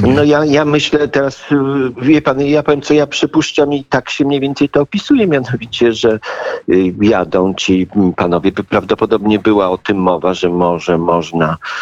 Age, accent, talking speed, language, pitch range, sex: 50-69, native, 170 wpm, Polish, 90-115 Hz, male